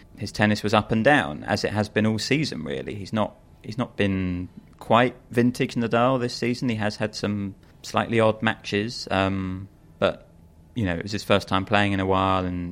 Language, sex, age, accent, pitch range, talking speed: English, male, 30-49, British, 90-105 Hz, 210 wpm